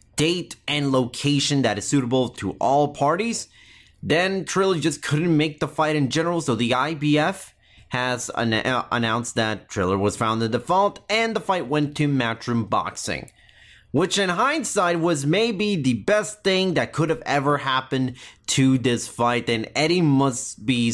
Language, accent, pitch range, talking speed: English, American, 115-165 Hz, 165 wpm